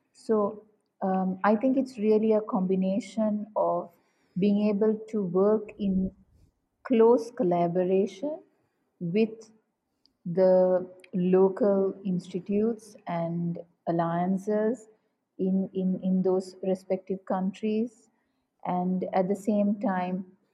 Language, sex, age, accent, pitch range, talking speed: English, female, 50-69, Indian, 185-215 Hz, 95 wpm